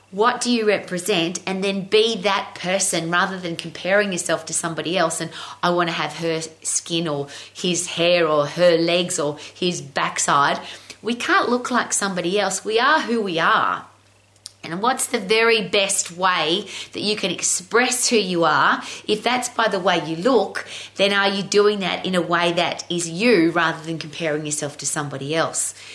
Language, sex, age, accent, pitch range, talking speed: English, female, 30-49, Australian, 165-215 Hz, 185 wpm